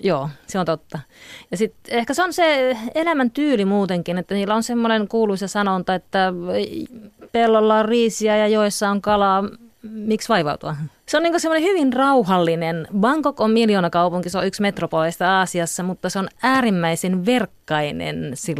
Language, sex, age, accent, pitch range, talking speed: Finnish, female, 30-49, native, 165-230 Hz, 160 wpm